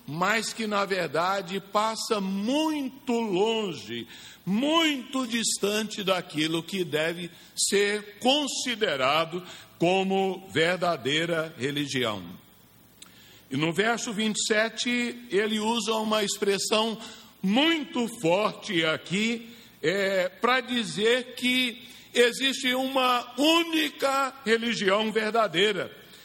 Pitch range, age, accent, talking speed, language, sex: 190-240 Hz, 60-79, Brazilian, 80 wpm, Portuguese, male